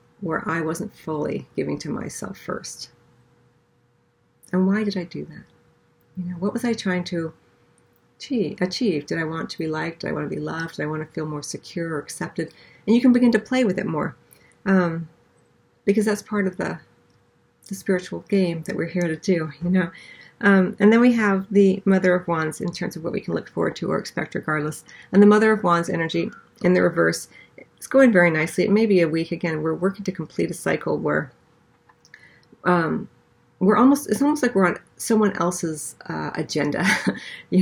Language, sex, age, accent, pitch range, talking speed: English, female, 40-59, American, 155-195 Hz, 205 wpm